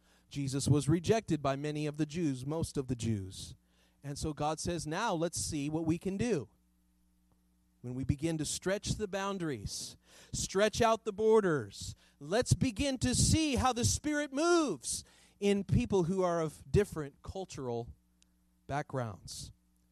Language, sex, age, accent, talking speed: English, male, 30-49, American, 150 wpm